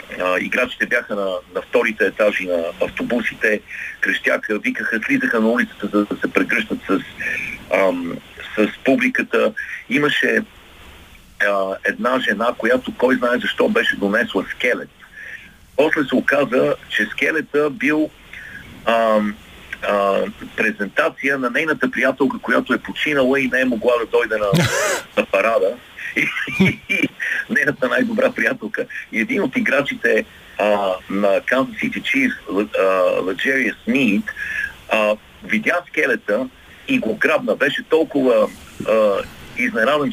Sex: male